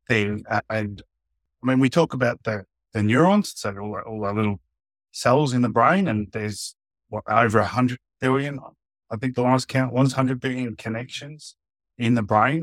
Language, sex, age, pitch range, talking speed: English, male, 30-49, 100-125 Hz, 175 wpm